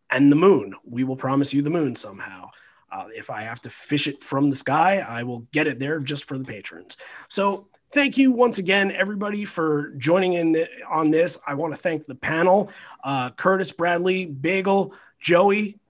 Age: 30-49